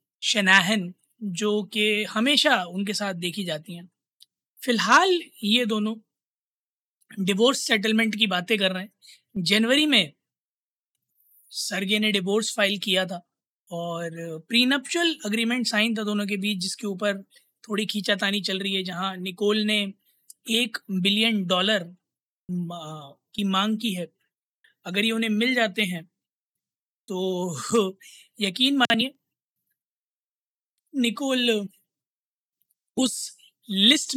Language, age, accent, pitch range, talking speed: Hindi, 20-39, native, 190-230 Hz, 115 wpm